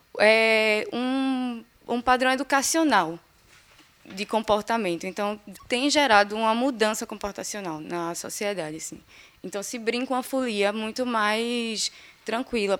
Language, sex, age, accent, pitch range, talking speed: Portuguese, female, 10-29, Brazilian, 205-255 Hz, 115 wpm